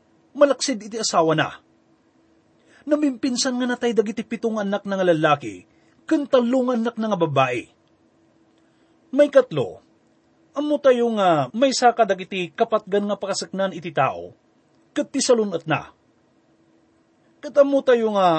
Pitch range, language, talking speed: 200-260 Hz, English, 110 wpm